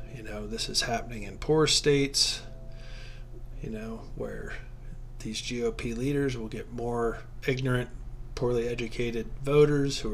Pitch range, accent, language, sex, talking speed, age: 120-140 Hz, American, English, male, 130 wpm, 40-59